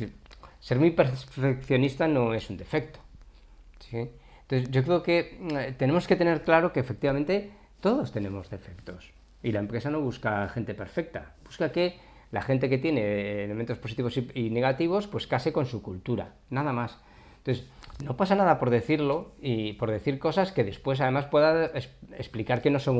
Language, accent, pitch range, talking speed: Spanish, Spanish, 105-140 Hz, 170 wpm